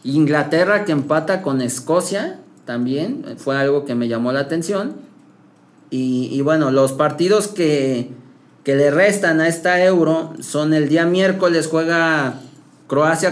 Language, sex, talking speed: Spanish, male, 140 wpm